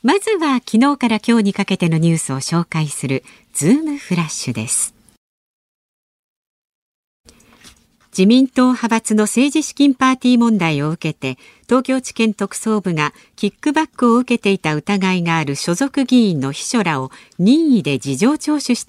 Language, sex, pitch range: Japanese, female, 170-250 Hz